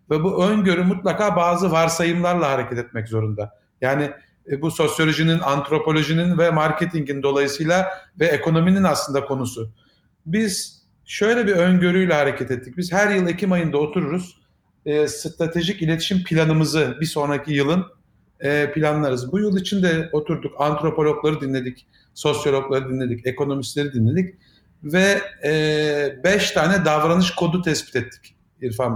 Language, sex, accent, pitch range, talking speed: Turkish, male, native, 145-190 Hz, 120 wpm